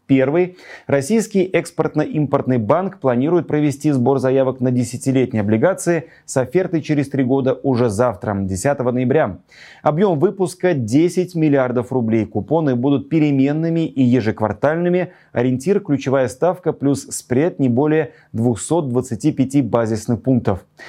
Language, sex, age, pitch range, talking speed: Russian, male, 30-49, 120-155 Hz, 125 wpm